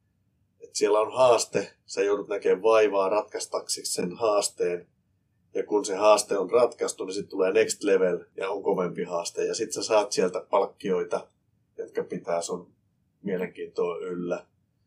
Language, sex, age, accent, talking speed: Finnish, male, 30-49, native, 145 wpm